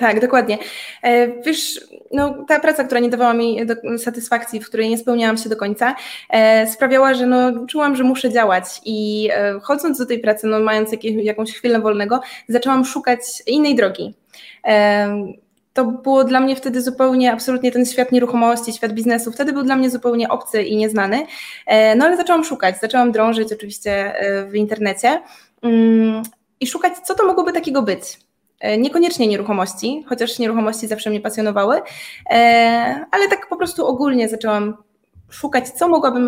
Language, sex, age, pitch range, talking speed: Polish, female, 20-39, 215-255 Hz, 145 wpm